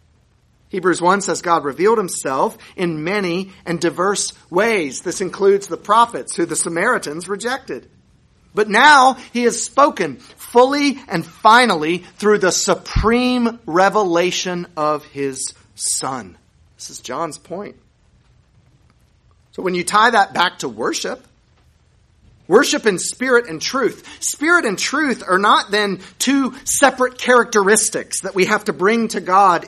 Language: English